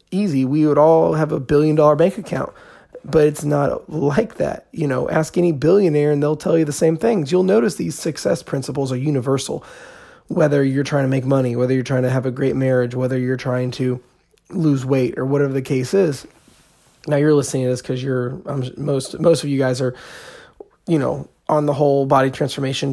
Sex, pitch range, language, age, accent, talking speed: male, 135-165 Hz, English, 20-39, American, 205 wpm